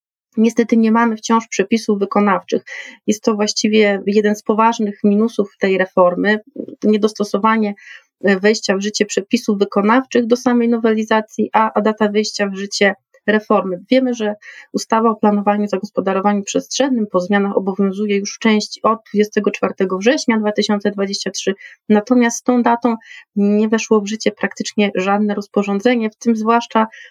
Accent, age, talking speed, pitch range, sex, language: native, 30-49, 135 wpm, 205-235 Hz, female, Polish